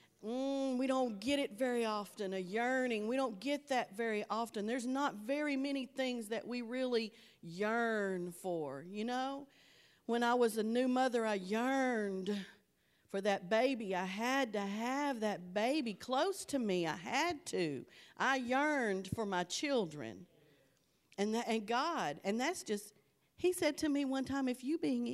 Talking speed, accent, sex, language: 160 wpm, American, female, English